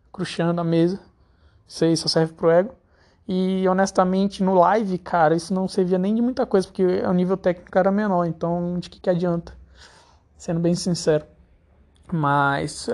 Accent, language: Brazilian, Portuguese